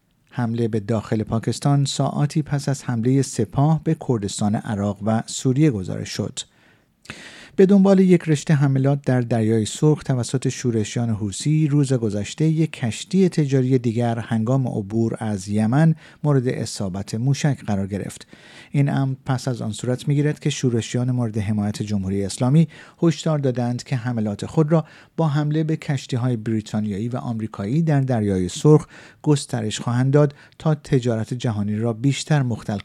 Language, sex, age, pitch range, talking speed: Persian, male, 50-69, 110-150 Hz, 145 wpm